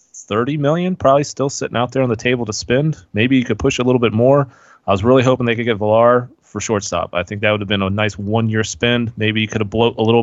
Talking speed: 275 wpm